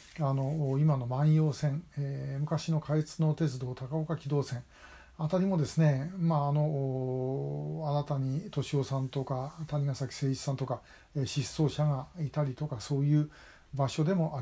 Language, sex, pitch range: Japanese, male, 130-160 Hz